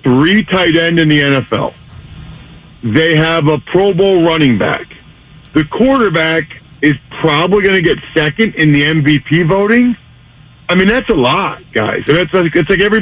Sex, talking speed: male, 165 wpm